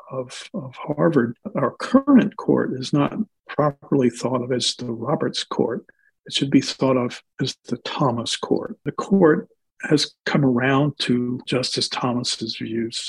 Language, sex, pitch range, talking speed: English, male, 125-150 Hz, 150 wpm